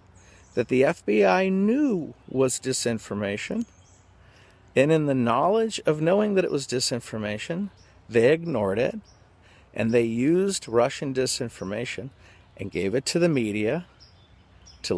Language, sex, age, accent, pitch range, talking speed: English, male, 50-69, American, 105-145 Hz, 125 wpm